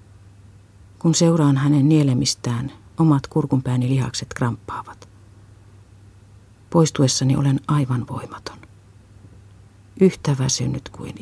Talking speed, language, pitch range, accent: 80 wpm, Finnish, 100-150 Hz, native